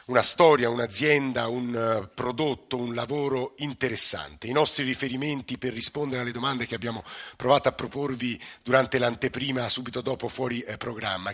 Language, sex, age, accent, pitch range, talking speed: Italian, male, 50-69, native, 110-130 Hz, 140 wpm